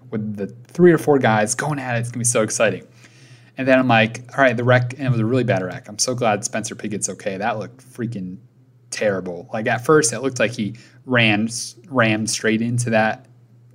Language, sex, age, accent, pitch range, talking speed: English, male, 30-49, American, 110-130 Hz, 225 wpm